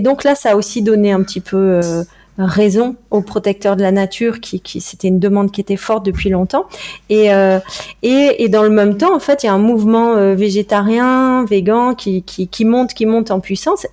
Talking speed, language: 230 wpm, French